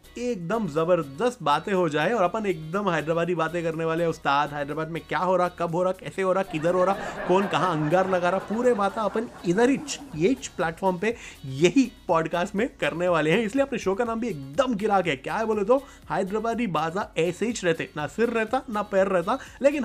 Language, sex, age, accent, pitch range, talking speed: Hindi, male, 30-49, native, 165-215 Hz, 220 wpm